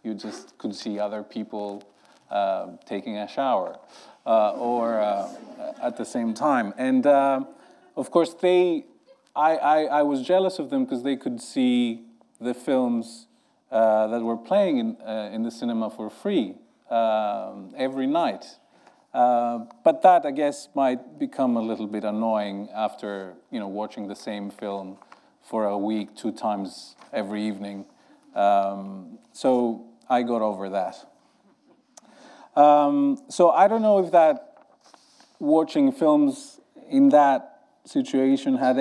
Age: 40-59